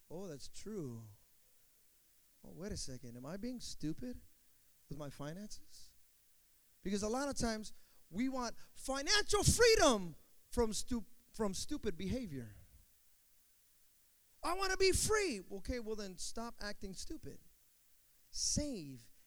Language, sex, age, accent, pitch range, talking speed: English, male, 30-49, American, 160-255 Hz, 125 wpm